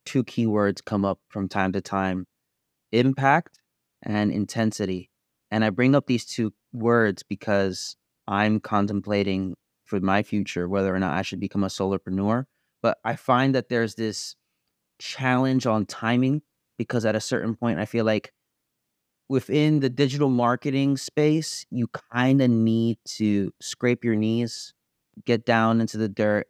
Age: 30-49